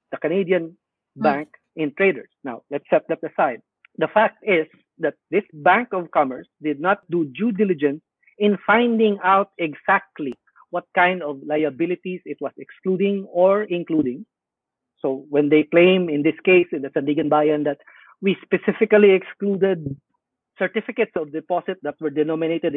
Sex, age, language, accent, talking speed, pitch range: male, 50-69, English, Filipino, 150 wpm, 155-195 Hz